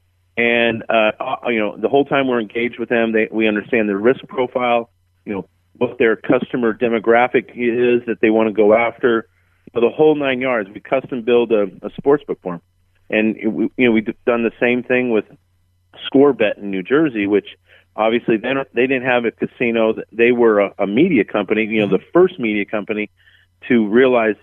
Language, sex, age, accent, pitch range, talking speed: English, male, 40-59, American, 95-120 Hz, 195 wpm